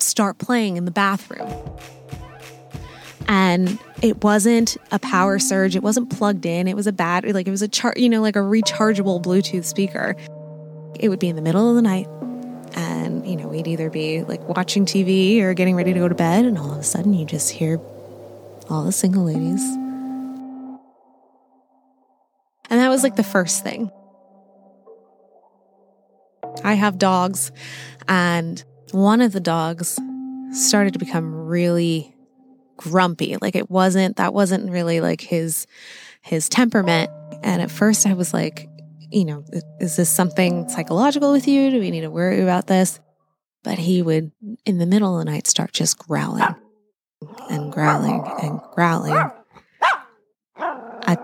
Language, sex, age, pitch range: English, female, 20-39, 170-220 Hz